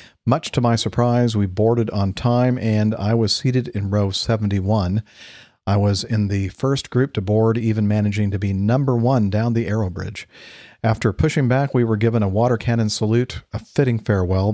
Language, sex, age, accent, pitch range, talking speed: English, male, 50-69, American, 100-115 Hz, 190 wpm